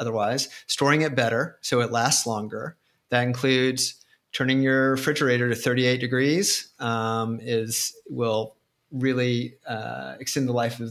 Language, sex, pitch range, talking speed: English, male, 120-135 Hz, 140 wpm